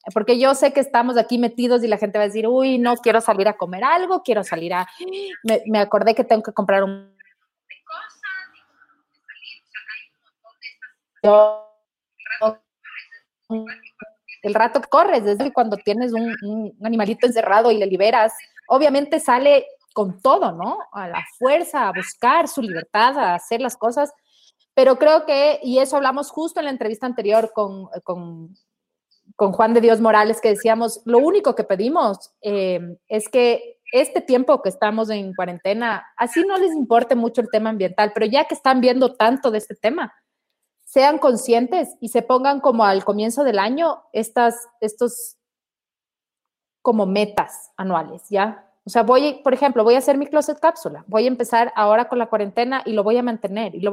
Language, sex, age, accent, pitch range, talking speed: English, female, 30-49, Mexican, 210-270 Hz, 170 wpm